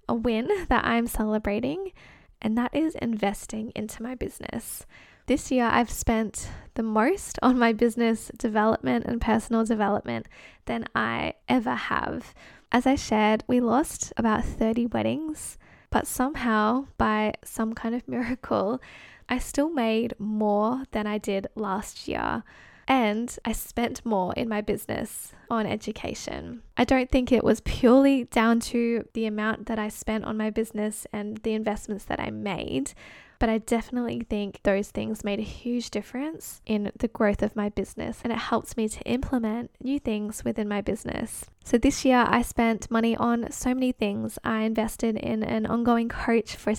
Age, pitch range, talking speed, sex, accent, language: 10-29, 215-245 Hz, 165 wpm, female, Australian, English